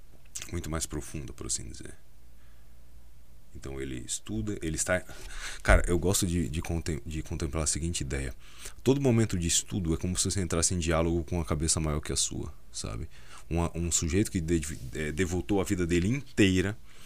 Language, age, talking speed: Portuguese, 20-39, 175 wpm